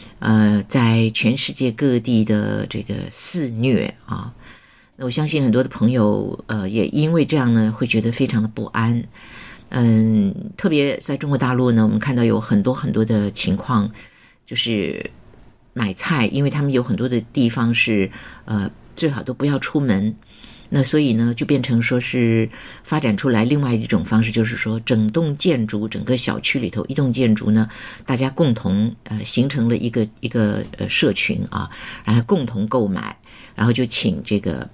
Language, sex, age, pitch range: Chinese, female, 50-69, 110-130 Hz